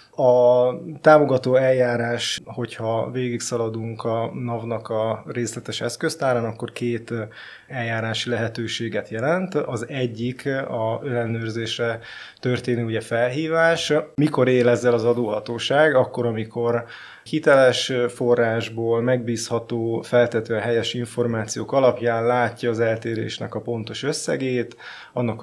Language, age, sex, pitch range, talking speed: Hungarian, 20-39, male, 115-125 Hz, 95 wpm